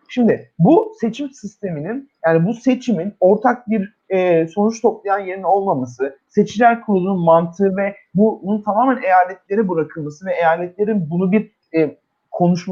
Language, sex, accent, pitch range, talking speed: Turkish, male, native, 175-230 Hz, 135 wpm